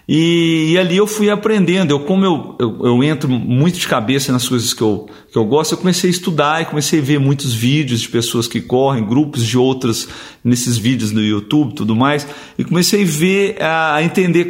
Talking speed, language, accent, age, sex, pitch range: 220 wpm, Portuguese, Brazilian, 50-69, male, 135-175 Hz